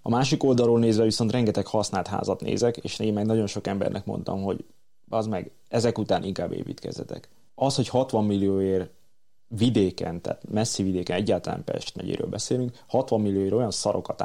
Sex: male